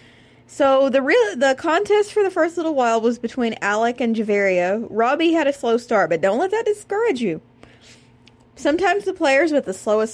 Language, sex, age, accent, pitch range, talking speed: English, female, 20-39, American, 195-290 Hz, 190 wpm